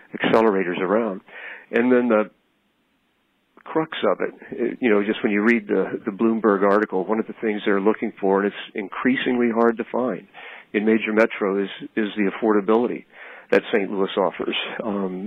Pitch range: 100-115 Hz